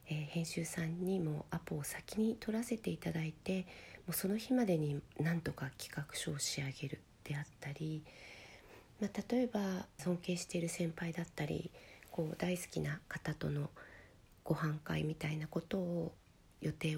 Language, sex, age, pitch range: Japanese, female, 40-59, 150-180 Hz